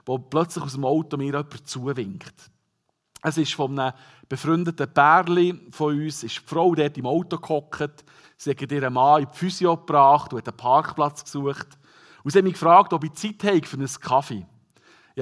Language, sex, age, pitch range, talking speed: German, male, 50-69, 125-160 Hz, 190 wpm